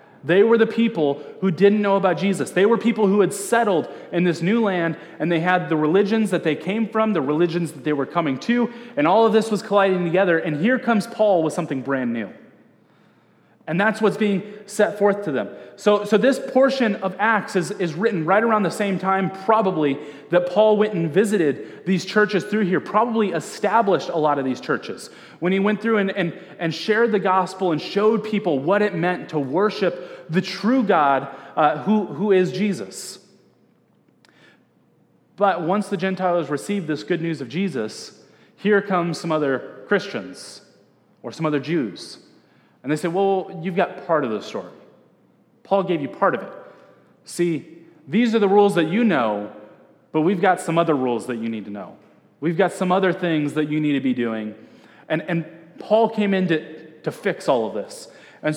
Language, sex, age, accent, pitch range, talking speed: English, male, 30-49, American, 165-215 Hz, 195 wpm